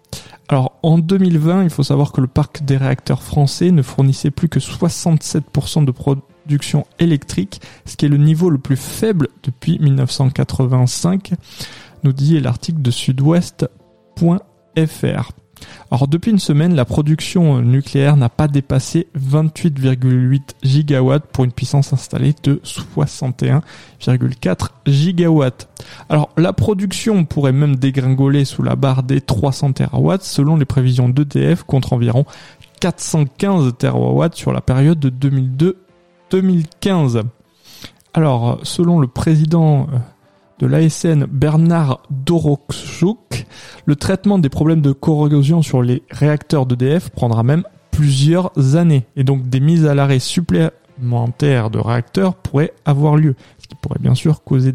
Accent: French